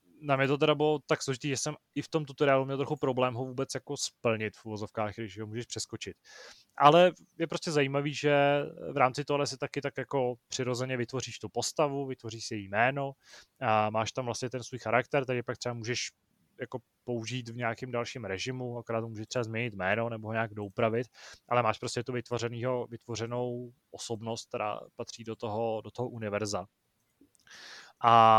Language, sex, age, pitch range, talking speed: Czech, male, 20-39, 115-130 Hz, 180 wpm